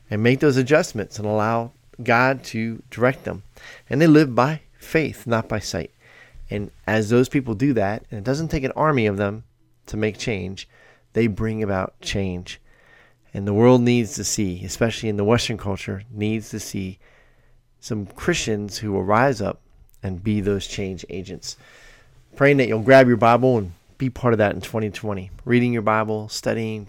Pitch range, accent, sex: 100-120 Hz, American, male